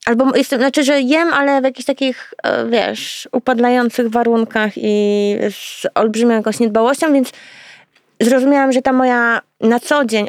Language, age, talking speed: Polish, 20-39, 140 wpm